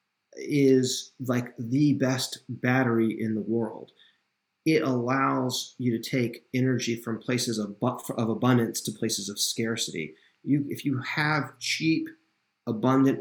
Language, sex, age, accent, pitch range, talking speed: English, male, 30-49, American, 115-135 Hz, 125 wpm